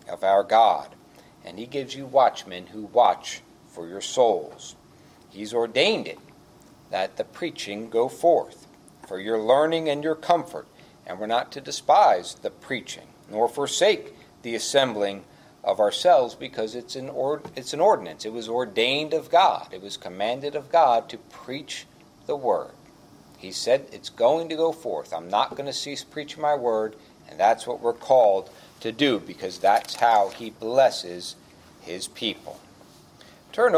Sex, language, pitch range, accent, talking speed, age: male, English, 105-145 Hz, American, 155 wpm, 50-69